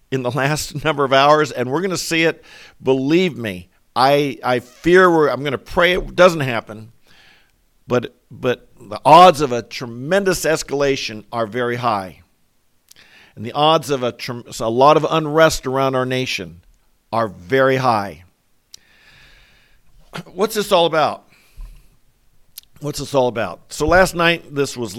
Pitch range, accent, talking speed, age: 120-150 Hz, American, 155 wpm, 50-69